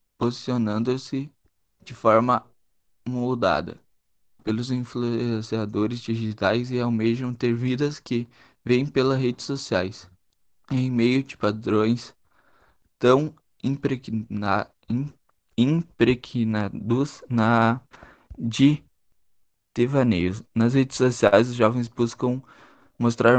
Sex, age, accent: male, 20-39, Brazilian